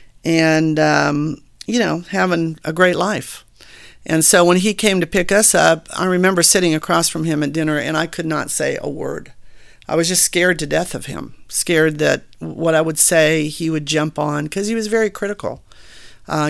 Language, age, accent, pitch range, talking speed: English, 50-69, American, 155-180 Hz, 205 wpm